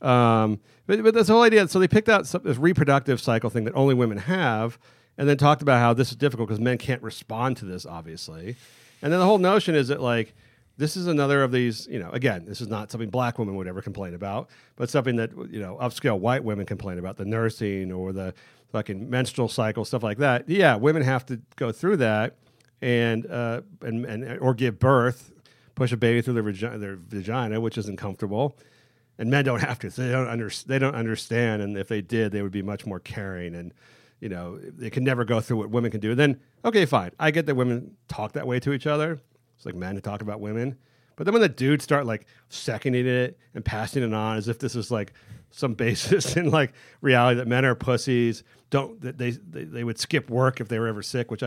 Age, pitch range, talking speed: 40-59, 110-135 Hz, 235 wpm